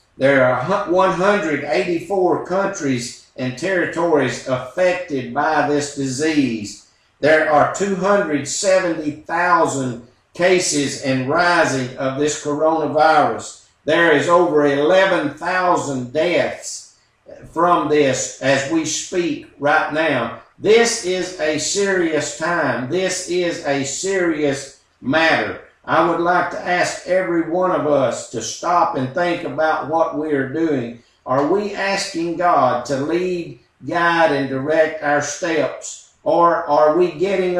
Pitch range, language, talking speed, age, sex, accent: 140-175 Hz, English, 120 wpm, 50-69, male, American